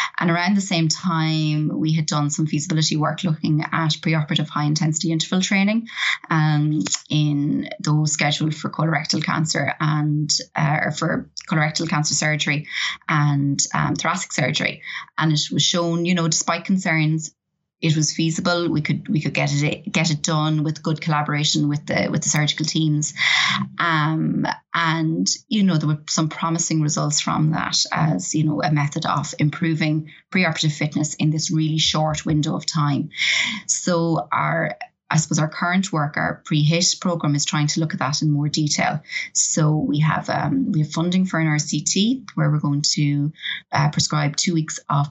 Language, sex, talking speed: English, female, 170 wpm